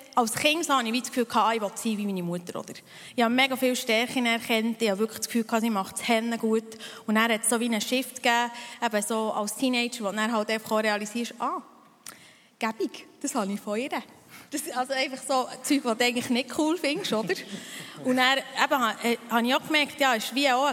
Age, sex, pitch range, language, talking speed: 20-39, female, 220-255 Hz, German, 225 wpm